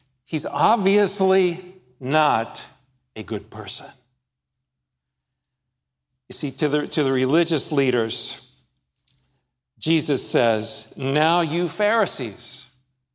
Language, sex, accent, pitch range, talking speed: English, male, American, 130-190 Hz, 85 wpm